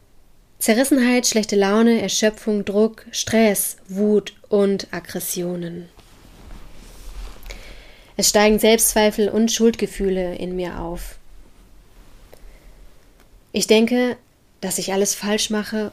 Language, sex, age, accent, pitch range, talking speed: German, female, 20-39, German, 190-225 Hz, 90 wpm